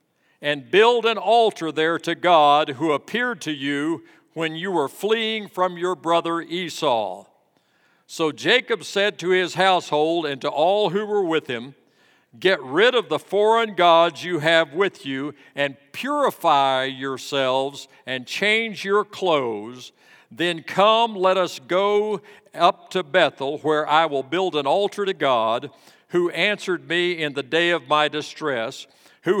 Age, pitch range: 50-69, 145-195 Hz